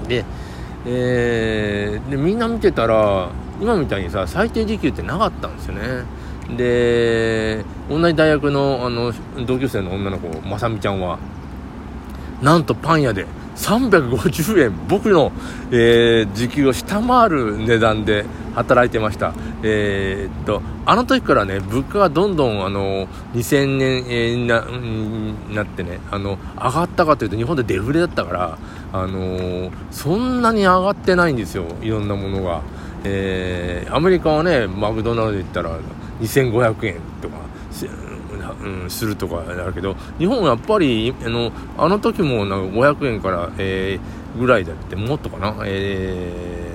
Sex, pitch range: male, 90-125 Hz